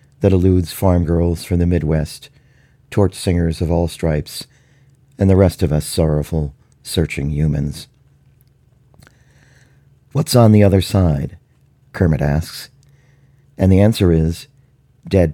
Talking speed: 125 wpm